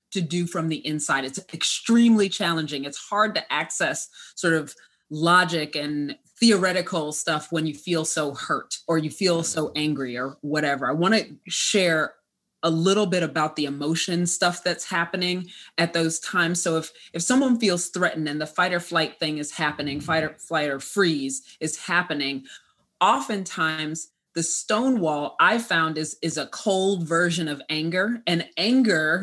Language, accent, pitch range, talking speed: English, American, 155-190 Hz, 165 wpm